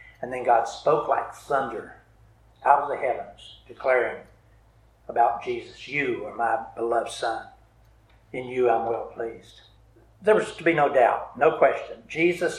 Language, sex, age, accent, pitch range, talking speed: English, male, 60-79, American, 110-170 Hz, 155 wpm